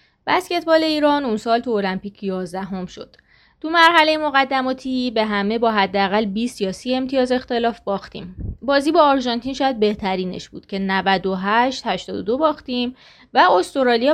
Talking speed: 140 wpm